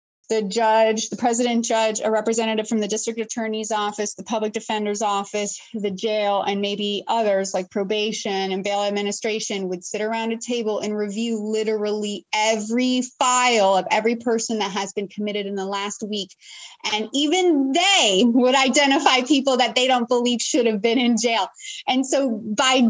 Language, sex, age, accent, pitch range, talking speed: English, female, 20-39, American, 205-250 Hz, 170 wpm